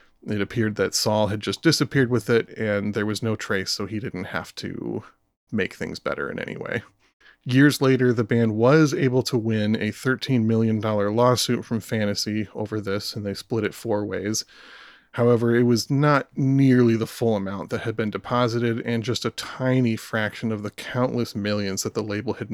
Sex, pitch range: male, 105-125 Hz